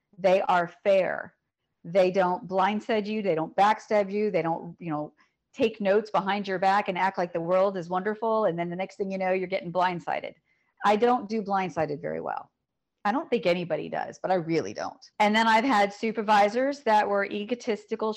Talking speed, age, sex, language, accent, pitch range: 200 wpm, 40-59, female, English, American, 190-230 Hz